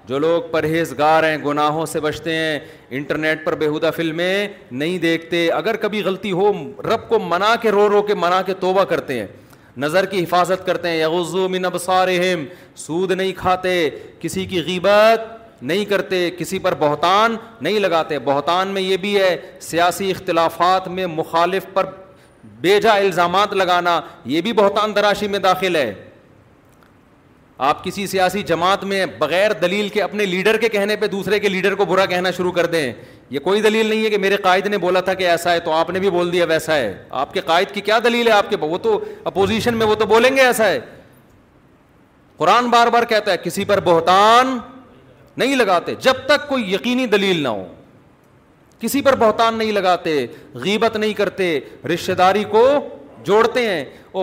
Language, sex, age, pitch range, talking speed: Urdu, male, 40-59, 170-210 Hz, 185 wpm